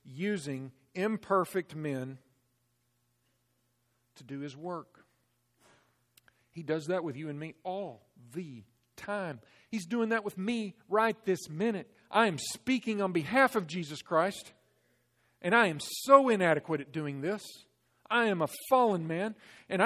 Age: 50-69